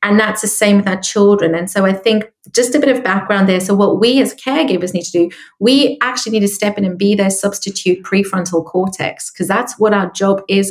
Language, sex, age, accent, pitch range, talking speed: English, female, 30-49, British, 180-210 Hz, 240 wpm